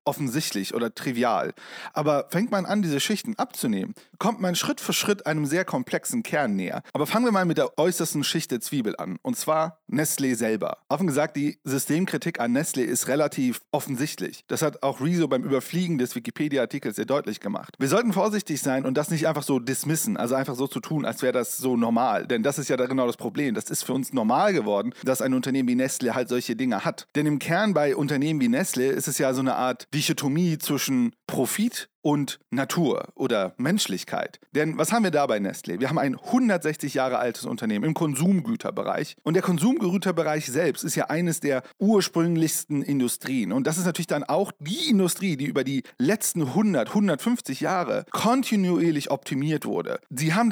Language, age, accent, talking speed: German, 40-59, German, 195 wpm